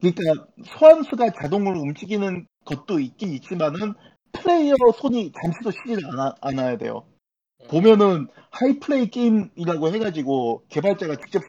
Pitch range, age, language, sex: 140-210 Hz, 40-59, Korean, male